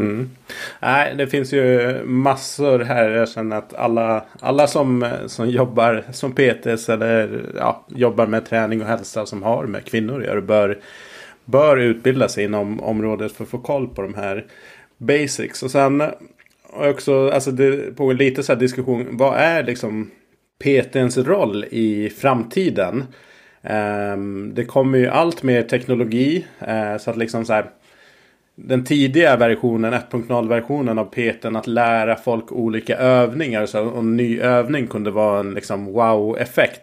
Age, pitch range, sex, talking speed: 30-49, 110-130 Hz, male, 140 wpm